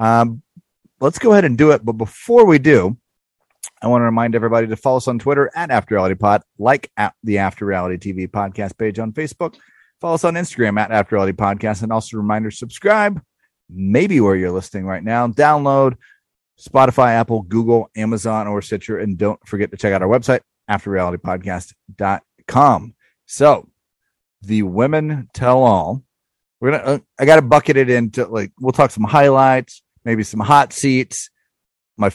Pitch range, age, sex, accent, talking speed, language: 105-130 Hz, 30-49, male, American, 170 wpm, English